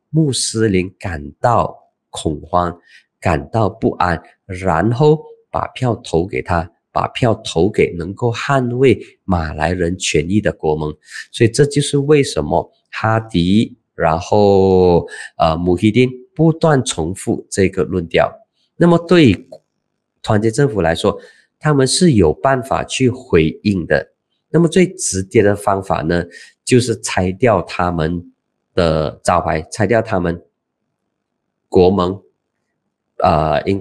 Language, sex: Chinese, male